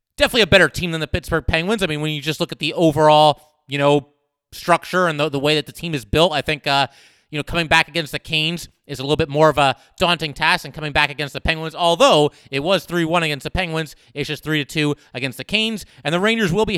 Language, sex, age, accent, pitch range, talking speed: English, male, 30-49, American, 145-175 Hz, 260 wpm